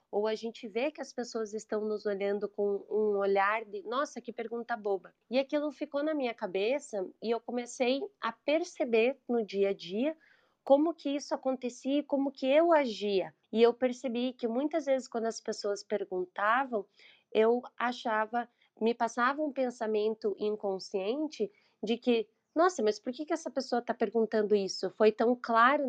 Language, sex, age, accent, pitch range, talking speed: Portuguese, female, 20-39, Brazilian, 205-250 Hz, 170 wpm